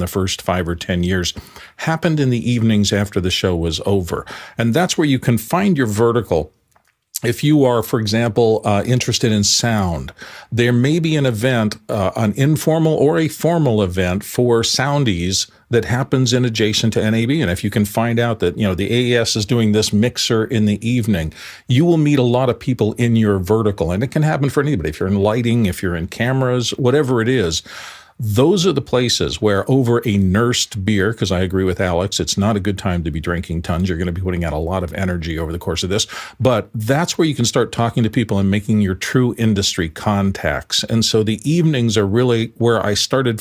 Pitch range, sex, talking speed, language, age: 95-125 Hz, male, 220 wpm, English, 50-69